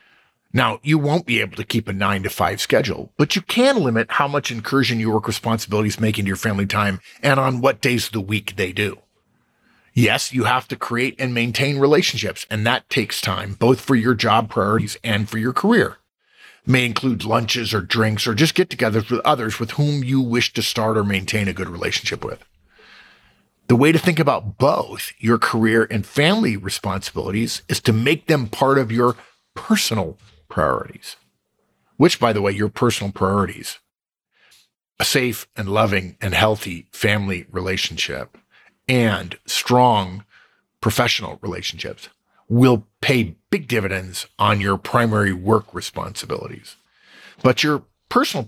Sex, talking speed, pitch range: male, 160 wpm, 105-135 Hz